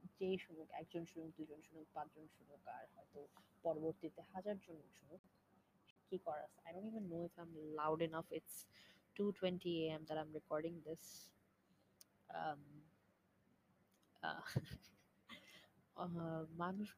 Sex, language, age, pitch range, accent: female, Bengali, 20-39, 155-185 Hz, native